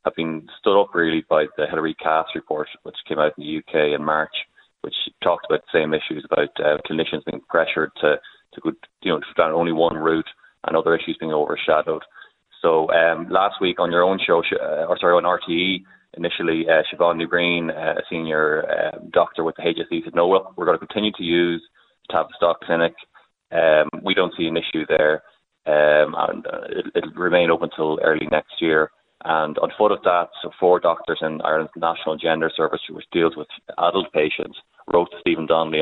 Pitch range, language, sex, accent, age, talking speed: 80-85 Hz, English, male, Irish, 20-39, 195 wpm